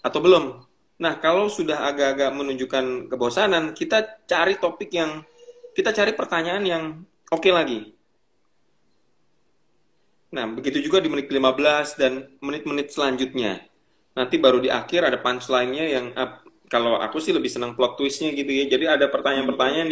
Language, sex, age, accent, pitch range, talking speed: Indonesian, male, 20-39, native, 130-175 Hz, 145 wpm